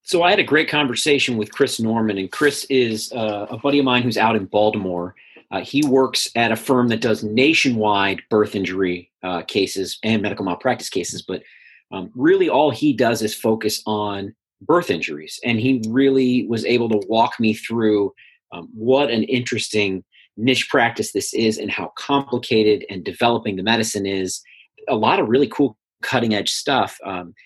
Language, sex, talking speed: English, male, 180 wpm